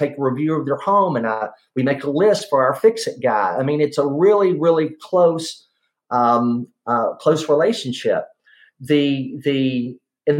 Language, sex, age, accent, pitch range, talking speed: English, male, 40-59, American, 140-180 Hz, 175 wpm